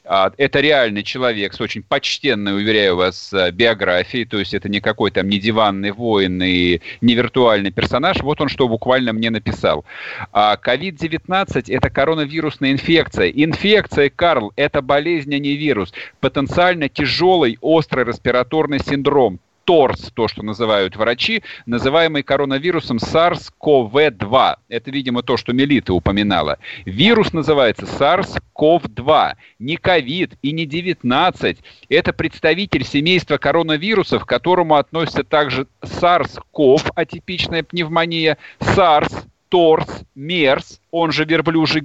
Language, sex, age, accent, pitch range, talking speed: Russian, male, 40-59, native, 125-170 Hz, 120 wpm